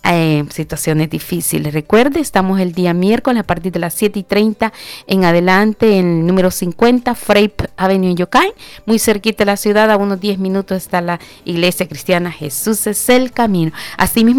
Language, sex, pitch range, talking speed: Spanish, female, 170-205 Hz, 175 wpm